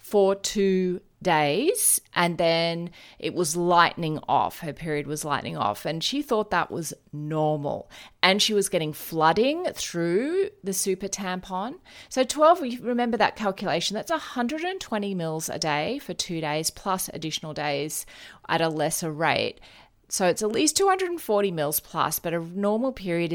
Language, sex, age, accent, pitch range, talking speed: English, female, 30-49, Australian, 155-200 Hz, 155 wpm